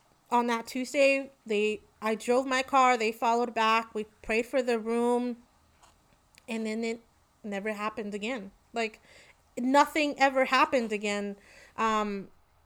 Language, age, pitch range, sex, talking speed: English, 30-49, 225-270 Hz, female, 135 wpm